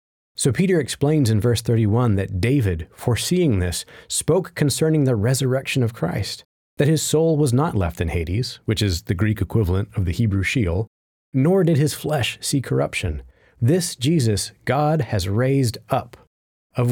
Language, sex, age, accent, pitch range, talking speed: English, male, 30-49, American, 90-130 Hz, 165 wpm